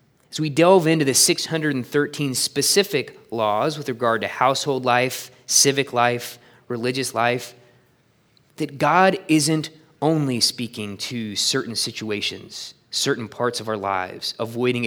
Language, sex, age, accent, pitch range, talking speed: English, male, 20-39, American, 125-170 Hz, 125 wpm